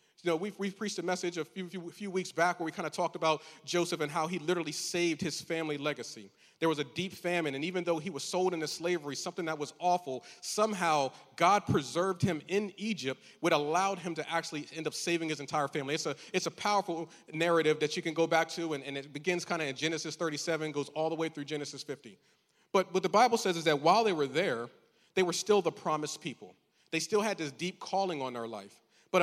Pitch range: 150-180 Hz